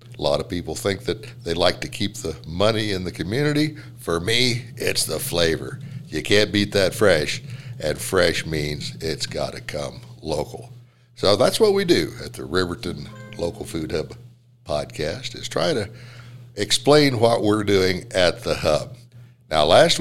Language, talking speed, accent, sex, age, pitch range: English, 170 wpm, American, male, 60-79, 95-125 Hz